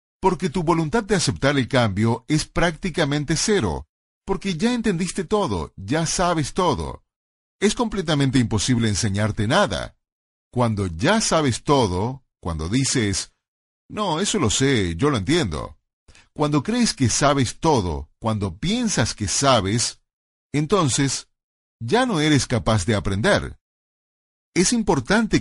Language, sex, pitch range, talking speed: Spanish, male, 110-165 Hz, 125 wpm